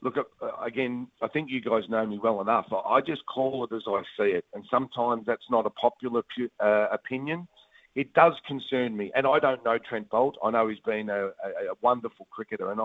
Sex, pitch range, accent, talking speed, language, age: male, 110-130 Hz, Australian, 215 wpm, English, 40-59